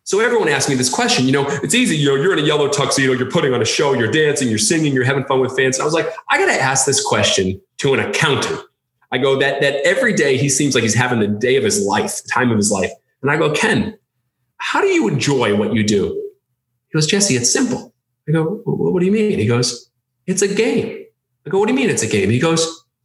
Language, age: English, 30-49